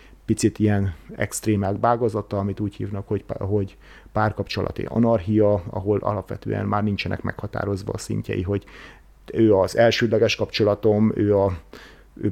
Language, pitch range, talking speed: Hungarian, 100-115 Hz, 125 wpm